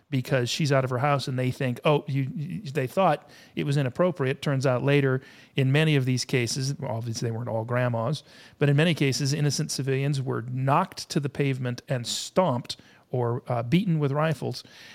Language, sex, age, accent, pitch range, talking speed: English, male, 40-59, American, 125-155 Hz, 185 wpm